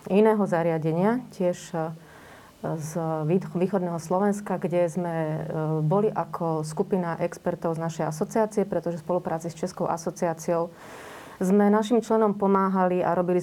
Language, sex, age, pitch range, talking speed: Slovak, female, 30-49, 170-200 Hz, 120 wpm